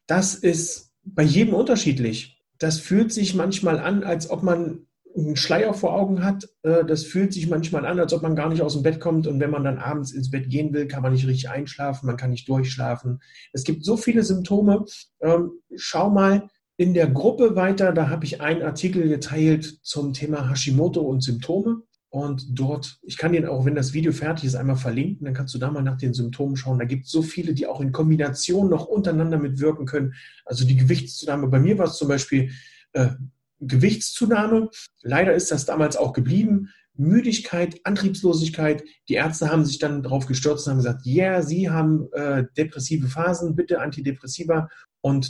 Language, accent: German, German